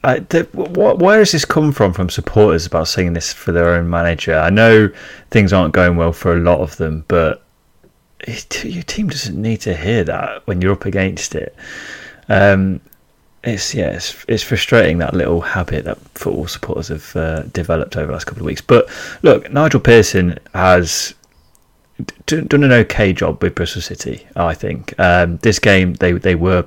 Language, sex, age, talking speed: English, male, 30-49, 190 wpm